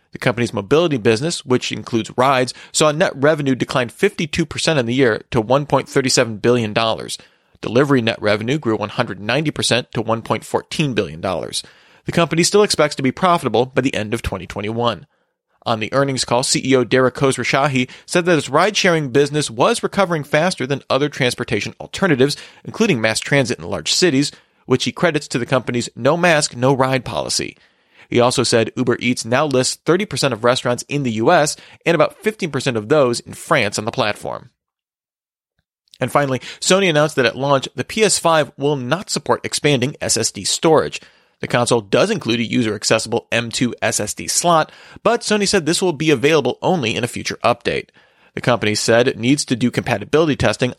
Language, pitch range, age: English, 120-155 Hz, 40-59